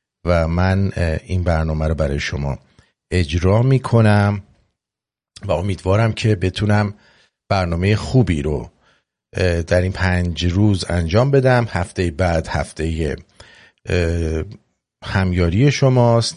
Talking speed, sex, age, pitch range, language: 105 wpm, male, 50-69, 90-120 Hz, English